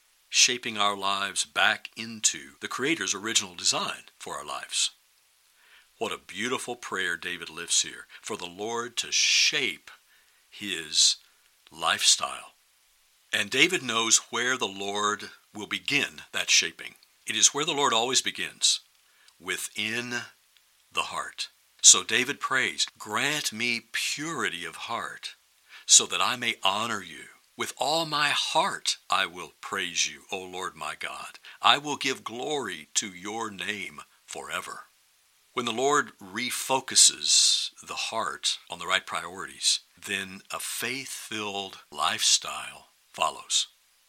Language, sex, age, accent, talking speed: English, male, 60-79, American, 130 wpm